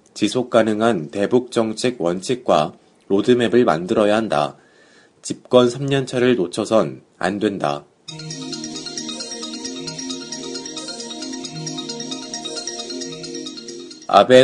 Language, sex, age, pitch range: Korean, male, 30-49, 110-130 Hz